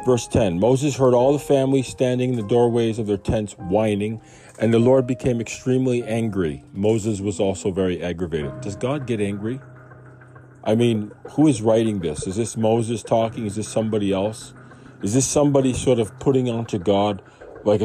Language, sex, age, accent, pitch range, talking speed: English, male, 40-59, American, 100-130 Hz, 180 wpm